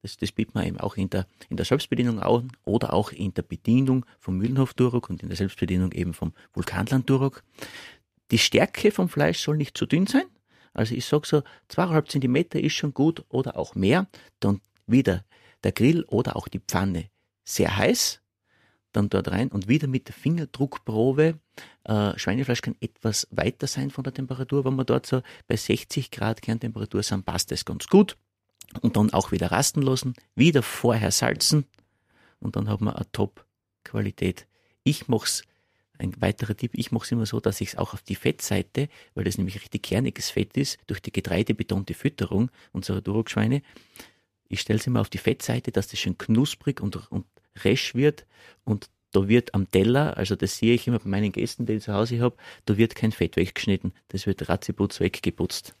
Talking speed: 185 wpm